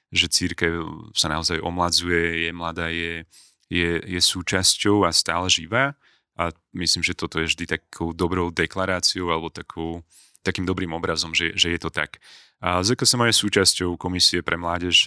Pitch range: 85-95 Hz